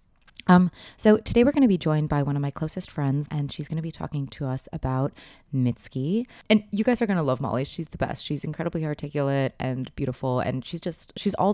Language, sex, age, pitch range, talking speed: English, female, 20-39, 135-175 Hz, 235 wpm